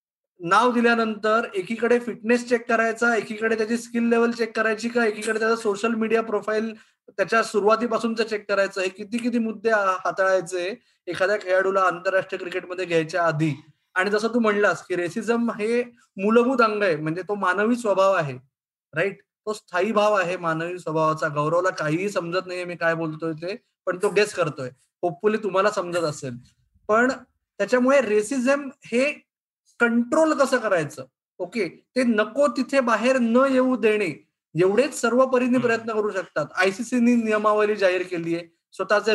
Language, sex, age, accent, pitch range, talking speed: Marathi, male, 20-39, native, 185-235 Hz, 150 wpm